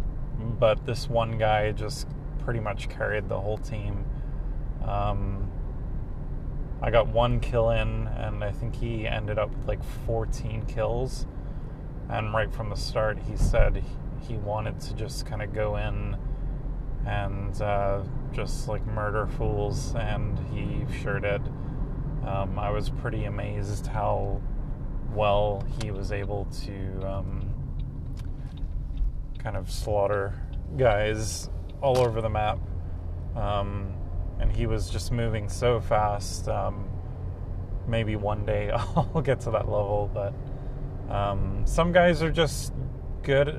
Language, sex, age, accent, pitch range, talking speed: English, male, 30-49, American, 100-125 Hz, 130 wpm